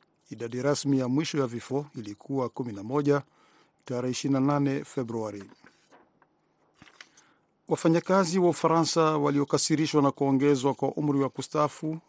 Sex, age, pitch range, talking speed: male, 50-69, 130-150 Hz, 90 wpm